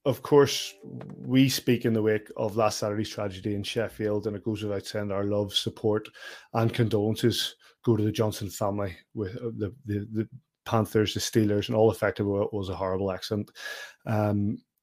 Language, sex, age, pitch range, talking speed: English, male, 30-49, 105-125 Hz, 180 wpm